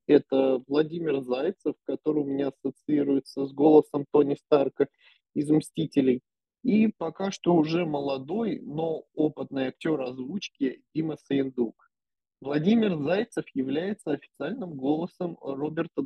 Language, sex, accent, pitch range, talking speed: Russian, male, native, 140-165 Hz, 110 wpm